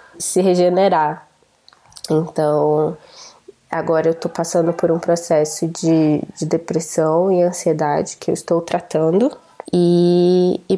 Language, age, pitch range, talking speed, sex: Portuguese, 20-39, 165-185 Hz, 115 wpm, female